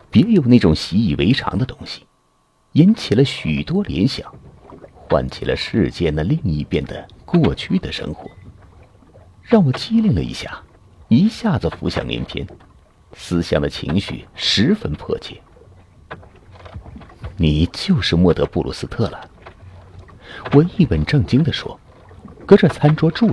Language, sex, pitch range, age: Chinese, male, 90-135 Hz, 50-69